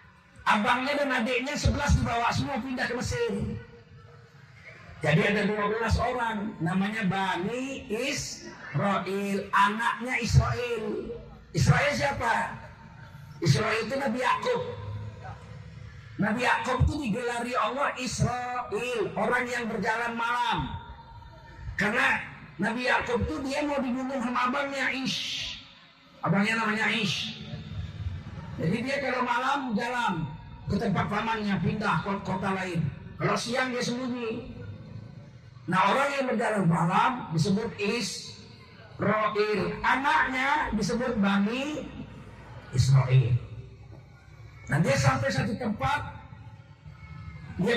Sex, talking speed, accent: male, 100 wpm, native